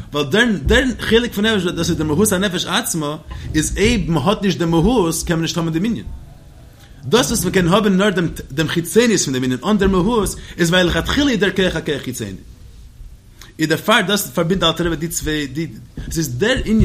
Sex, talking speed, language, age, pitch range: male, 50 wpm, English, 30-49, 135-185 Hz